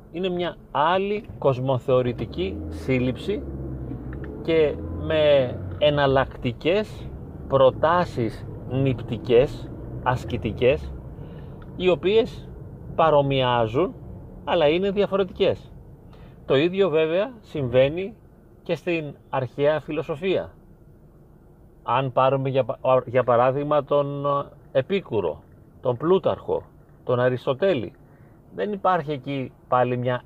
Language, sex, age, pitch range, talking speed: Greek, male, 30-49, 125-165 Hz, 80 wpm